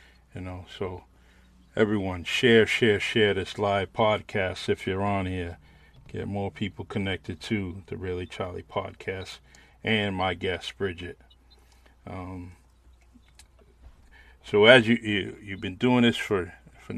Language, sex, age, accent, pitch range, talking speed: English, male, 40-59, American, 65-100 Hz, 140 wpm